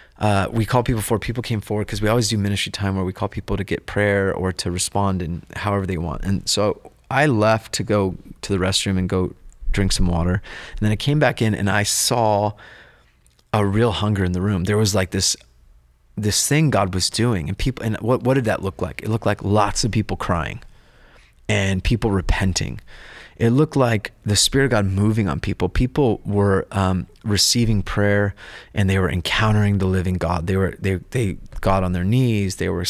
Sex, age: male, 30-49